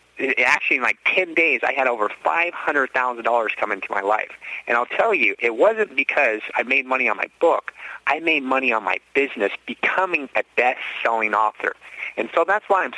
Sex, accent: male, American